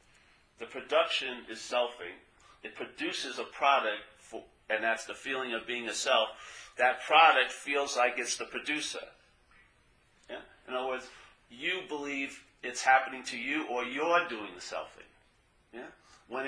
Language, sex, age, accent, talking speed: English, male, 40-59, American, 140 wpm